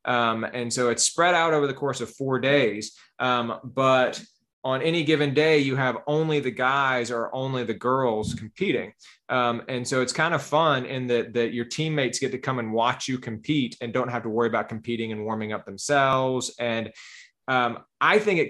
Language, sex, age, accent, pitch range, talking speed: English, male, 20-39, American, 120-145 Hz, 200 wpm